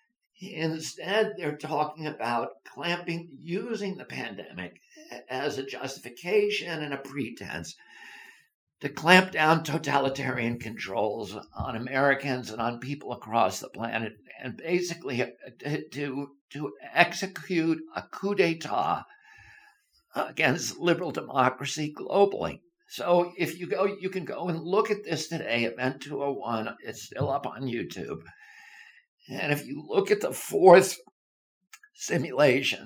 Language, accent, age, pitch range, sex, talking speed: English, American, 60-79, 135-200 Hz, male, 120 wpm